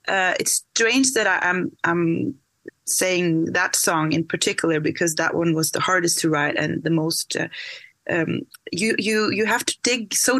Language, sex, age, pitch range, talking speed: English, female, 20-39, 165-210 Hz, 190 wpm